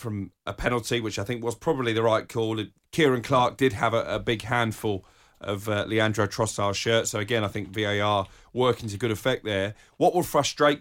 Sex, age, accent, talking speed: male, 30-49, British, 205 wpm